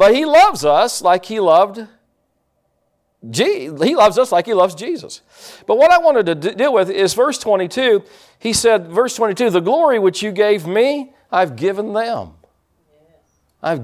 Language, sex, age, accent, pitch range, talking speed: English, male, 50-69, American, 150-215 Hz, 175 wpm